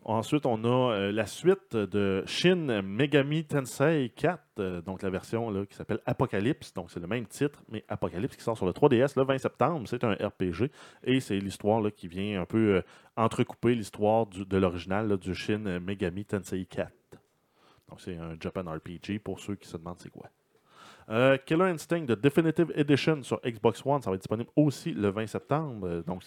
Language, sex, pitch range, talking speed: French, male, 95-125 Hz, 200 wpm